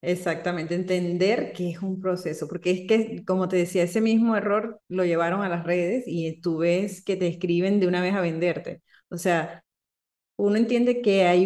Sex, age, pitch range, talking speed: female, 30-49, 175-215 Hz, 195 wpm